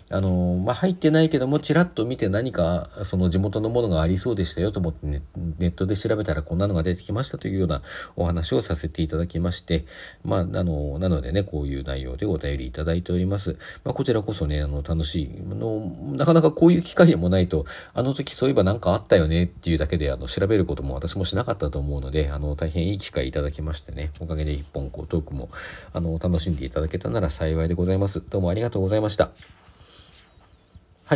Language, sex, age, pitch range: Japanese, male, 40-59, 80-110 Hz